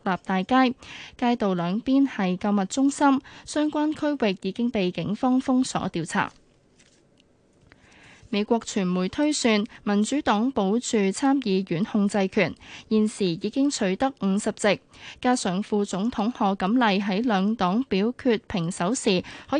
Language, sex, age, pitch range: Chinese, female, 10-29, 195-250 Hz